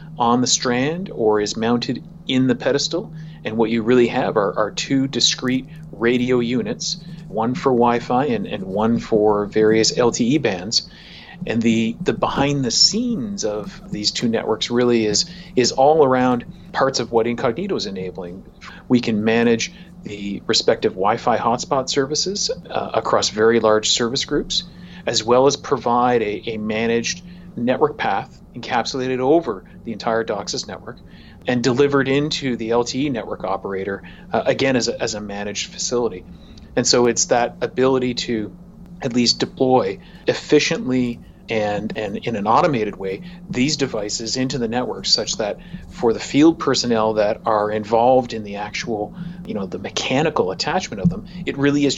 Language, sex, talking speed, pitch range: English, male, 160 wpm, 115-155 Hz